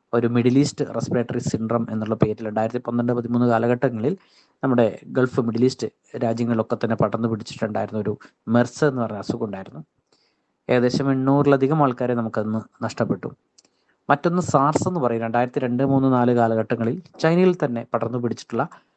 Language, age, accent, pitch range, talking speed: Malayalam, 20-39, native, 115-140 Hz, 130 wpm